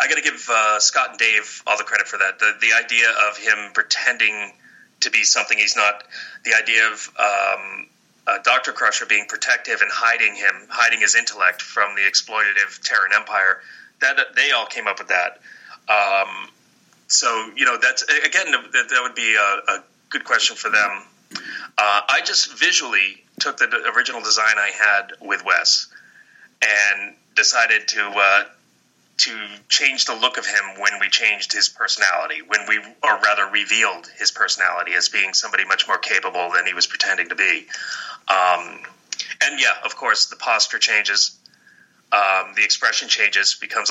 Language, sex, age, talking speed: English, male, 30-49, 170 wpm